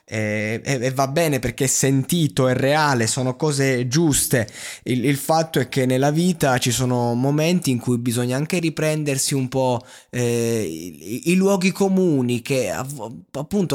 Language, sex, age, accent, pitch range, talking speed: Italian, male, 20-39, native, 115-150 Hz, 155 wpm